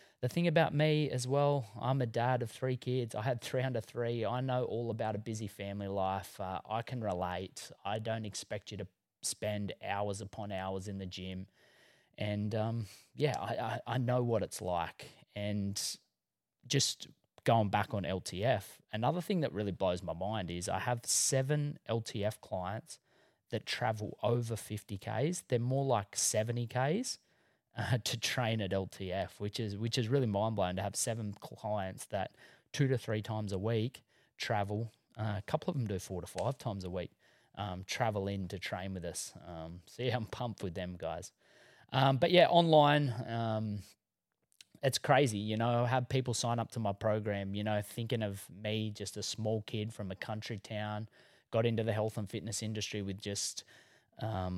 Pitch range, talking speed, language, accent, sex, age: 100-120 Hz, 185 wpm, English, Australian, male, 20-39